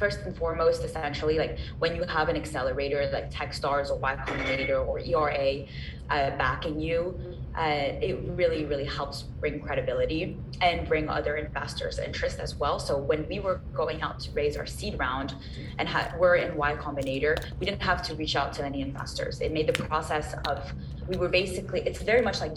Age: 20-39